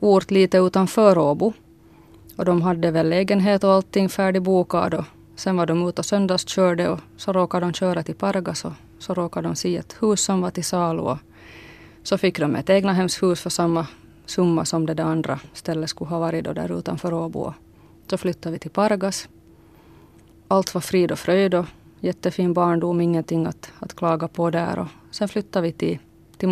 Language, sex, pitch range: Swedish, female, 165-190 Hz